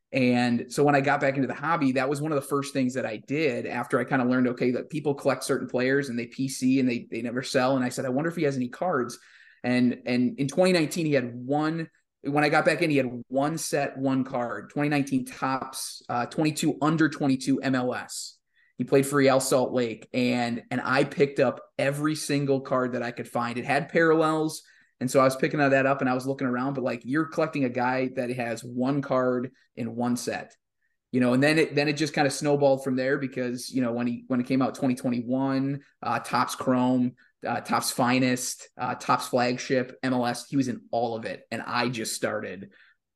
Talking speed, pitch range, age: 225 wpm, 125-140 Hz, 20-39